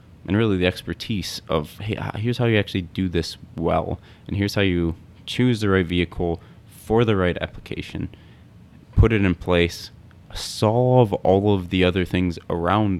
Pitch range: 85-105 Hz